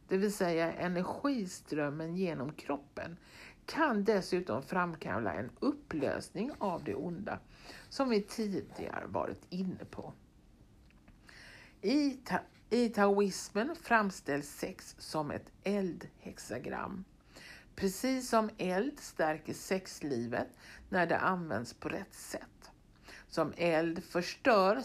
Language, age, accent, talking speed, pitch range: Swedish, 60-79, native, 100 wpm, 160-220 Hz